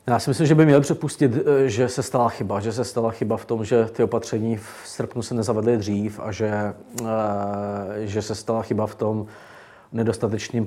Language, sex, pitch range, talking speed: Czech, male, 110-125 Hz, 190 wpm